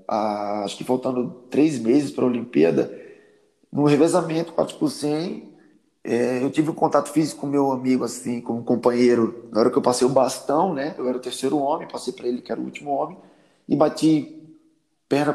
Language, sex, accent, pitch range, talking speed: Portuguese, male, Brazilian, 125-185 Hz, 185 wpm